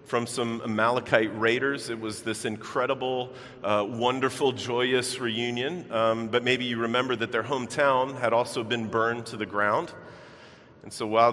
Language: English